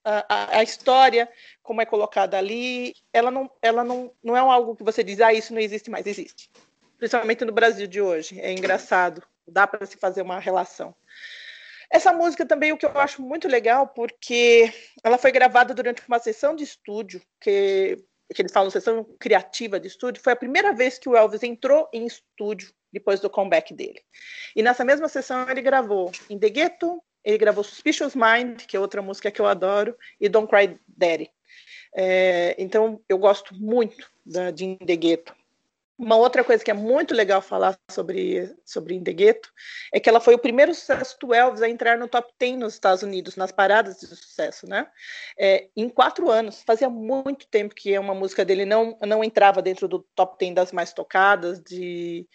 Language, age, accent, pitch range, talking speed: Portuguese, 40-59, Brazilian, 200-260 Hz, 185 wpm